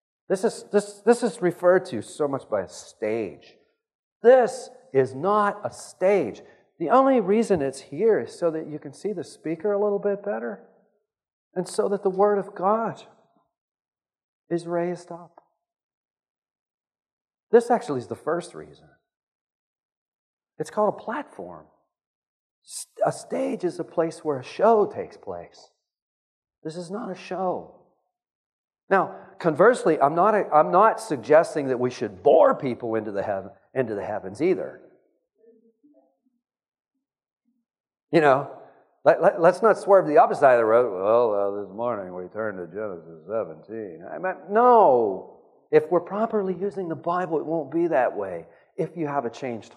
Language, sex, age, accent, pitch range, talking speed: English, male, 40-59, American, 150-225 Hz, 155 wpm